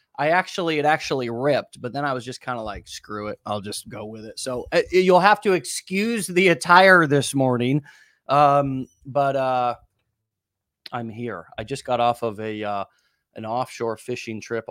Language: English